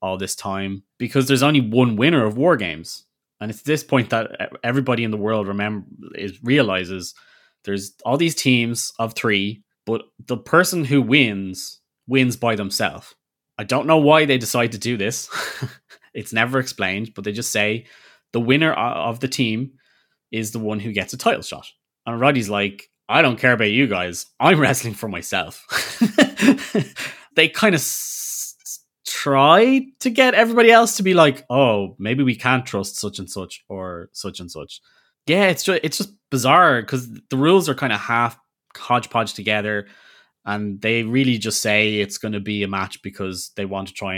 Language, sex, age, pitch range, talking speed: English, male, 20-39, 95-135 Hz, 180 wpm